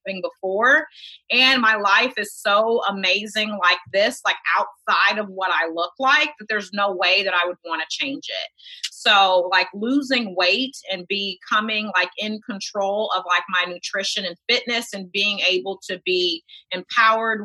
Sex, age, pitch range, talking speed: female, 30-49, 190-240 Hz, 165 wpm